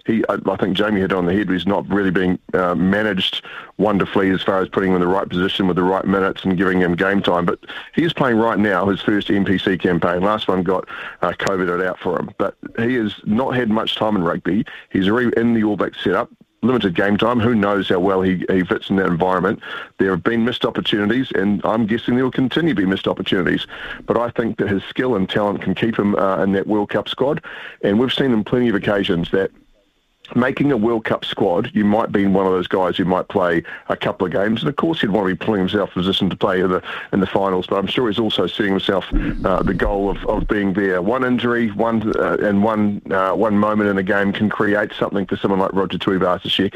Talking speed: 245 wpm